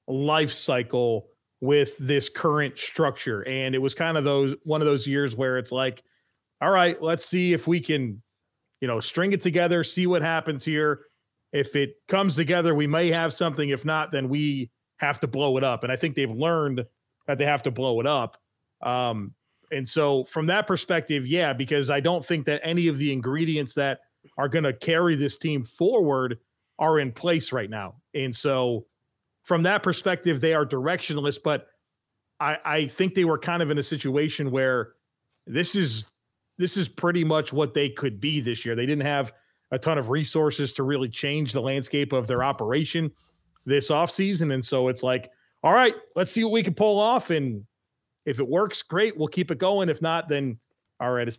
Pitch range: 130-160 Hz